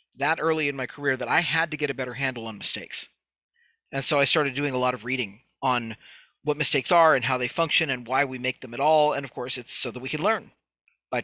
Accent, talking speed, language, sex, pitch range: American, 260 wpm, English, male, 130-170 Hz